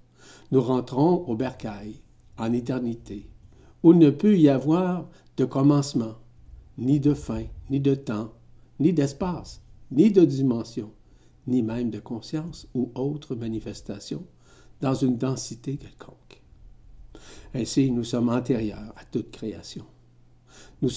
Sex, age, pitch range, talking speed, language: male, 60-79, 110-145 Hz, 125 wpm, French